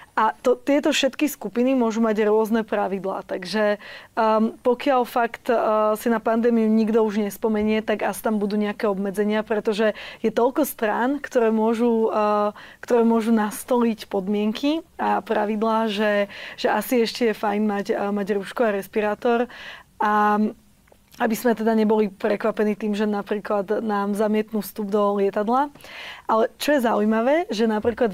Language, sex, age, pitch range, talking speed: Slovak, female, 20-39, 210-235 Hz, 150 wpm